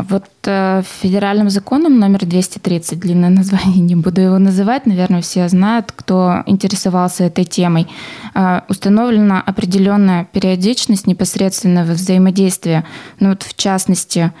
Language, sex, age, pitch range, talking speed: Russian, female, 20-39, 170-195 Hz, 120 wpm